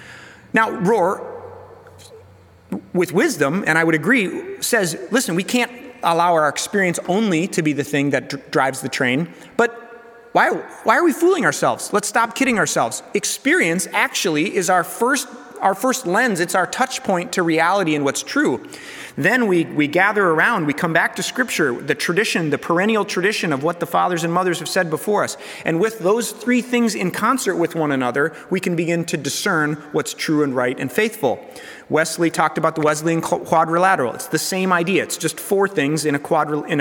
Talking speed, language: 190 wpm, English